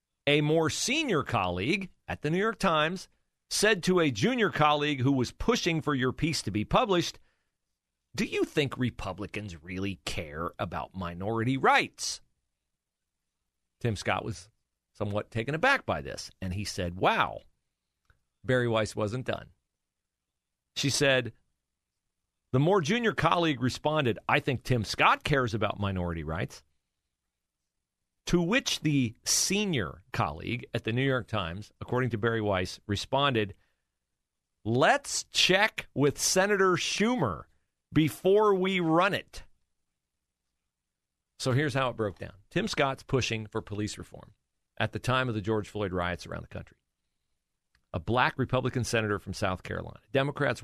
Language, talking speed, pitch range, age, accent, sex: English, 140 wpm, 95-145 Hz, 40-59, American, male